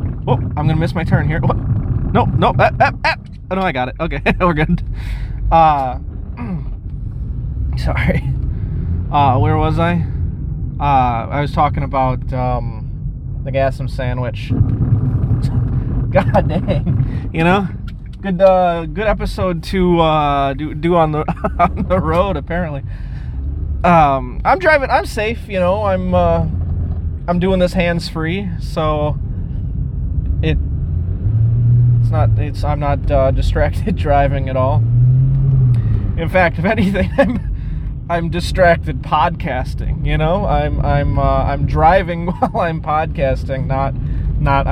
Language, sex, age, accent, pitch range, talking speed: English, male, 20-39, American, 105-150 Hz, 140 wpm